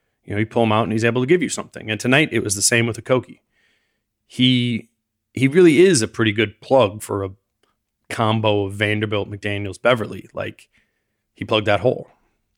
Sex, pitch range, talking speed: male, 105-125 Hz, 195 wpm